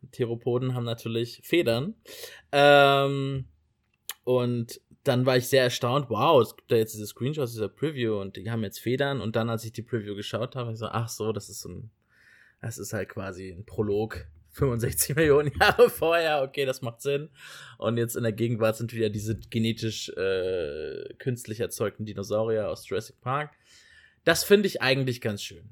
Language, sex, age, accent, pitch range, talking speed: English, male, 20-39, German, 110-135 Hz, 180 wpm